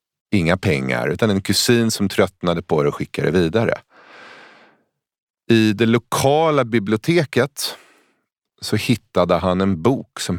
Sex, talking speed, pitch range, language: male, 135 wpm, 85-120 Hz, Swedish